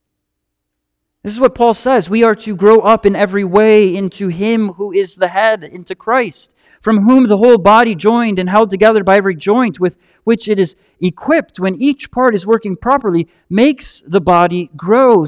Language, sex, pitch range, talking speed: English, male, 195-250 Hz, 190 wpm